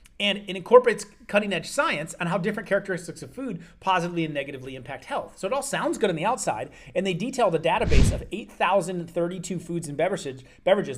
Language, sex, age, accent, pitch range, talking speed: English, male, 30-49, American, 165-205 Hz, 190 wpm